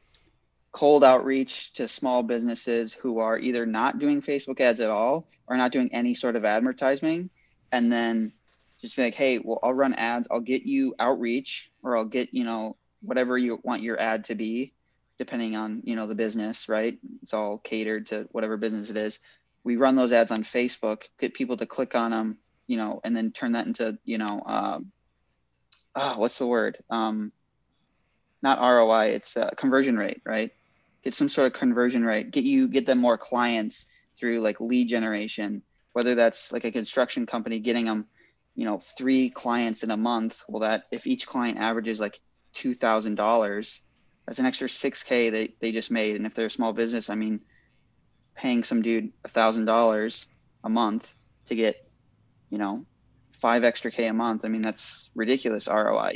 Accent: American